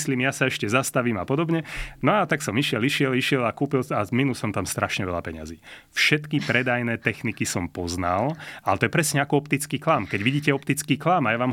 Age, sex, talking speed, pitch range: 30-49, male, 220 wpm, 115-140 Hz